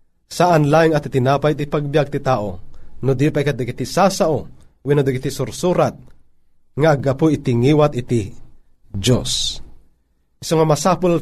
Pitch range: 120-160 Hz